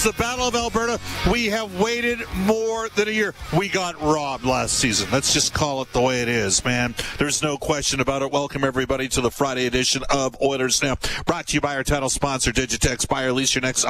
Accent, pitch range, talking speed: American, 105-145 Hz, 225 wpm